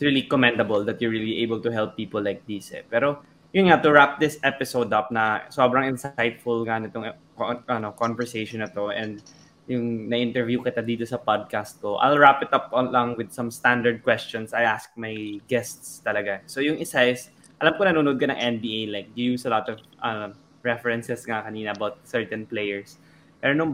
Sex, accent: male, native